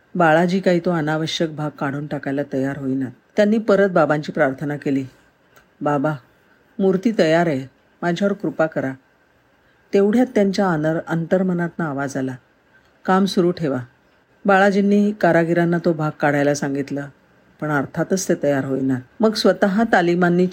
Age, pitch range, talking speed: 50-69, 145-185 Hz, 125 wpm